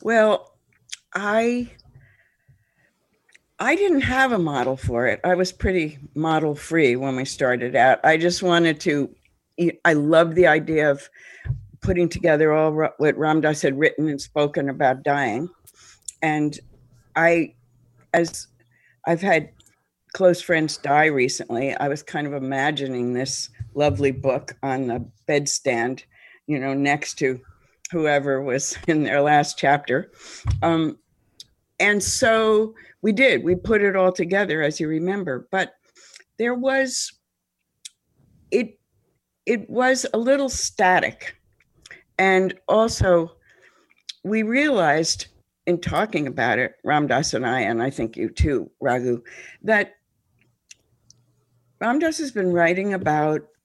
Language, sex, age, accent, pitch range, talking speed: English, female, 60-79, American, 135-180 Hz, 125 wpm